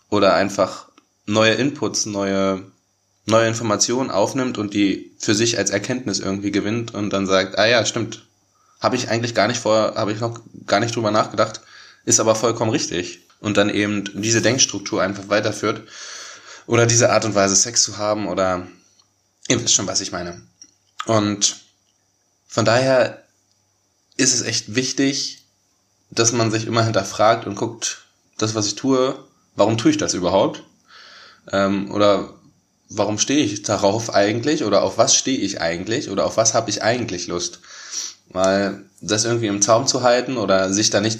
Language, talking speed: German, 165 wpm